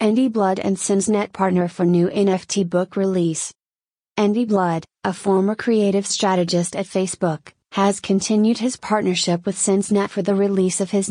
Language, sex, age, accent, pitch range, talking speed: English, female, 30-49, American, 180-205 Hz, 155 wpm